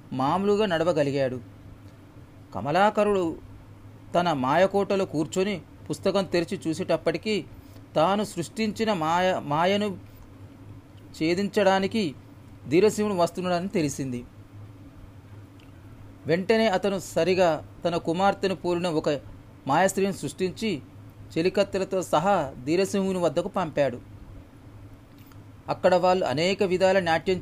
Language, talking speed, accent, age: Telugu, 80 wpm, native, 40-59